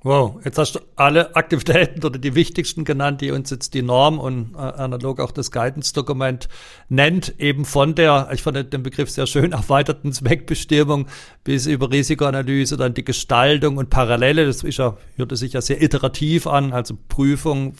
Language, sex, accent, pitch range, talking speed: German, male, German, 125-150 Hz, 165 wpm